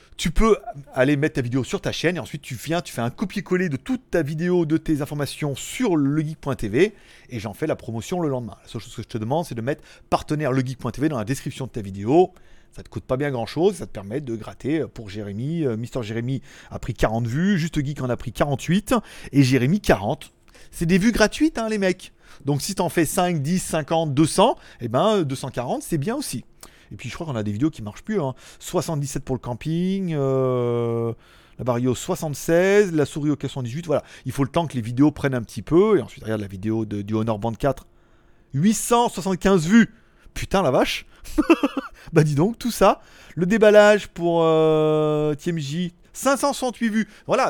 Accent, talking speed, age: French, 210 wpm, 30-49